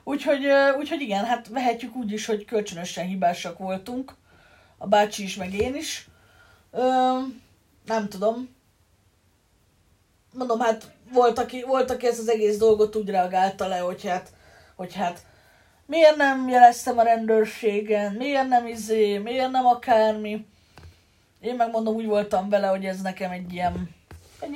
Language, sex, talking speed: Hungarian, female, 140 wpm